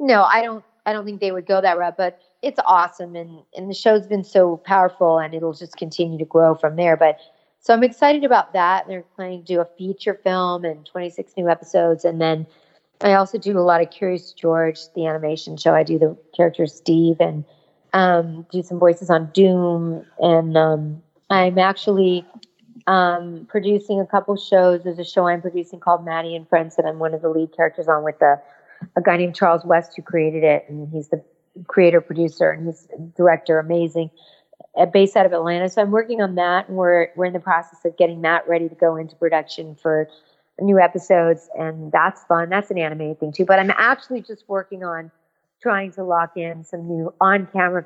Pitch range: 165-190 Hz